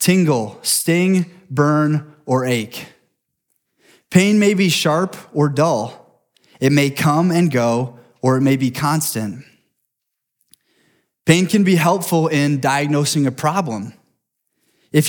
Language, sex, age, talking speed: English, male, 20-39, 120 wpm